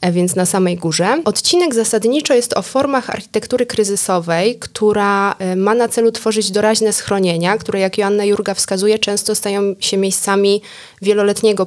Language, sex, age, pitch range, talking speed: Polish, female, 20-39, 185-220 Hz, 145 wpm